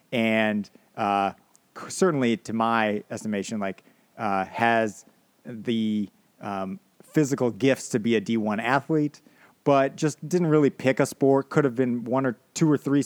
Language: English